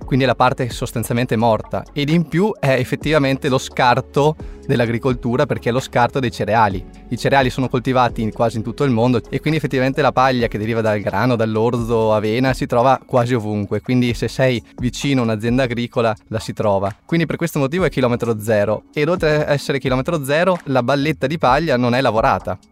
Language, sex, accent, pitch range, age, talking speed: Italian, male, native, 115-140 Hz, 20-39, 195 wpm